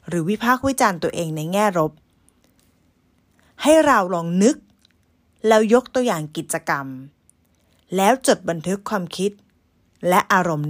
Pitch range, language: 155-225 Hz, Thai